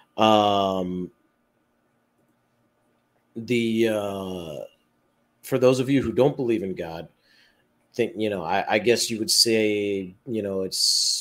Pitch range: 95-120 Hz